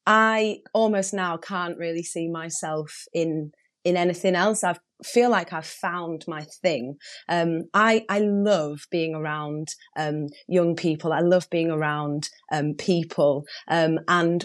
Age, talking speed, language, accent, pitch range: 30-49, 145 wpm, English, British, 155-195 Hz